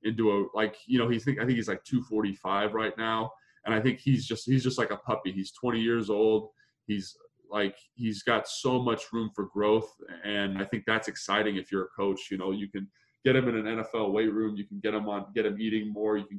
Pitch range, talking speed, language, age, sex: 100-120 Hz, 245 wpm, English, 20-39, male